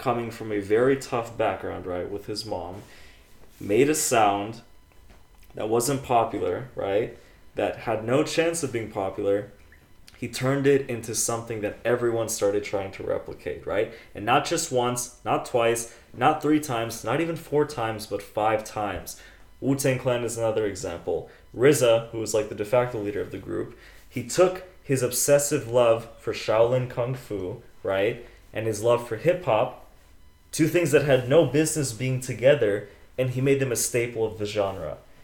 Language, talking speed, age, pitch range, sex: English, 175 wpm, 20-39, 110-135 Hz, male